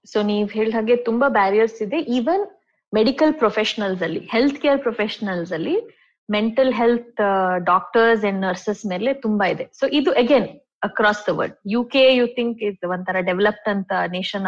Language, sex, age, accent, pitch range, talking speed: Kannada, female, 20-39, native, 200-280 Hz, 150 wpm